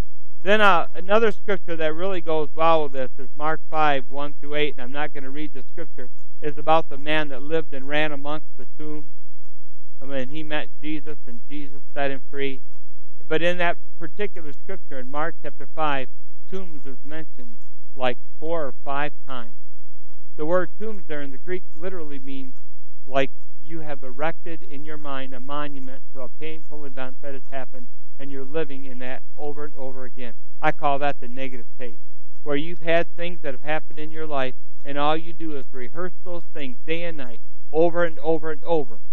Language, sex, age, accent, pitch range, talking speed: English, male, 60-79, American, 130-160 Hz, 200 wpm